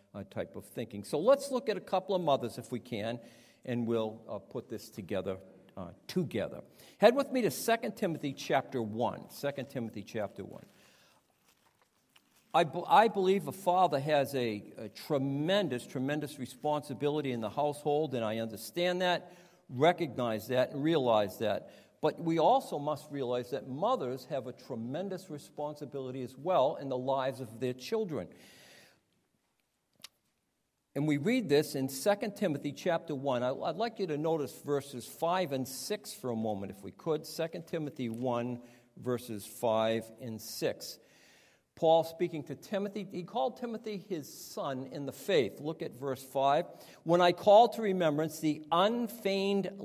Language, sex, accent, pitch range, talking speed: English, male, American, 125-180 Hz, 160 wpm